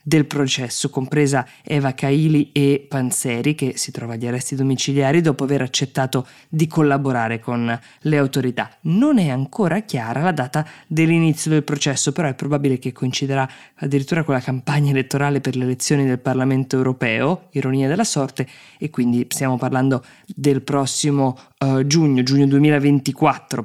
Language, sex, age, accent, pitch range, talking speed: Italian, female, 20-39, native, 130-150 Hz, 150 wpm